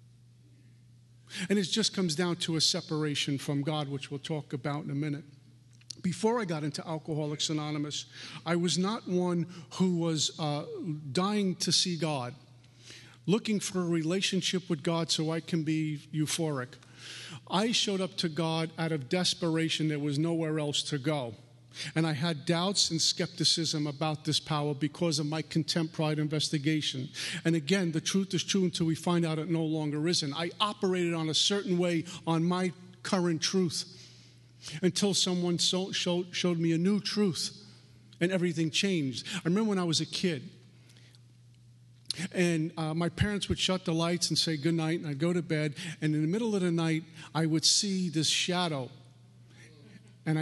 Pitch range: 150-175 Hz